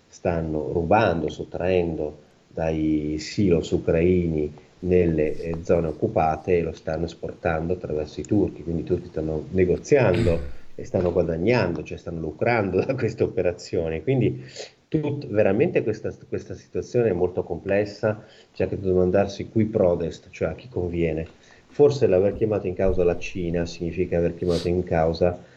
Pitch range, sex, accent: 80-90 Hz, male, native